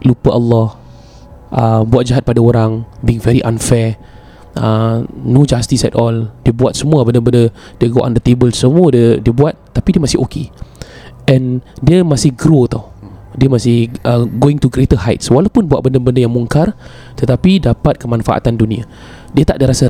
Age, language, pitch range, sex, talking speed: 20-39, Malay, 115-140 Hz, male, 170 wpm